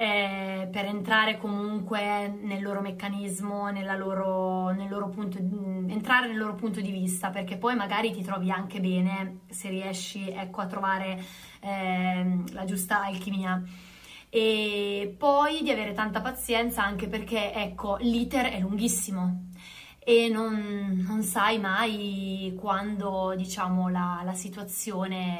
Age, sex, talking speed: 20-39, female, 135 wpm